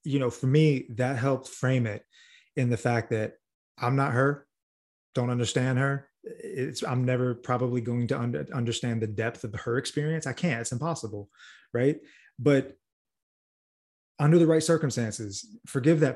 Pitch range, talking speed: 120-145 Hz, 160 wpm